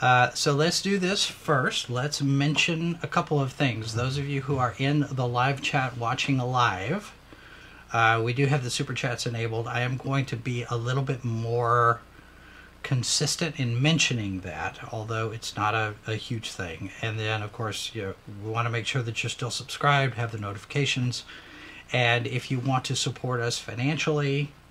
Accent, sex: American, male